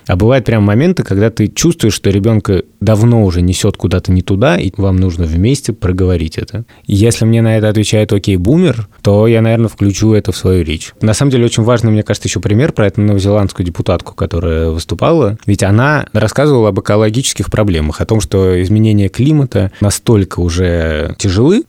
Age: 20-39